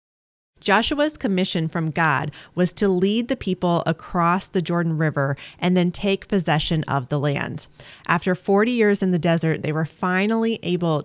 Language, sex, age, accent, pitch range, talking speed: English, female, 30-49, American, 155-190 Hz, 165 wpm